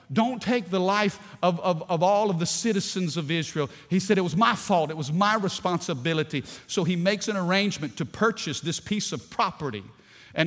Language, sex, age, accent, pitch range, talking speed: English, male, 50-69, American, 120-185 Hz, 200 wpm